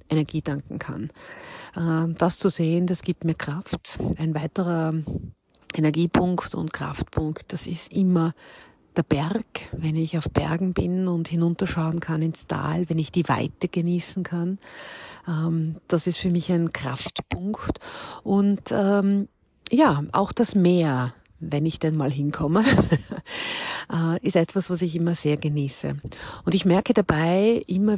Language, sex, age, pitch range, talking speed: German, female, 50-69, 155-180 Hz, 135 wpm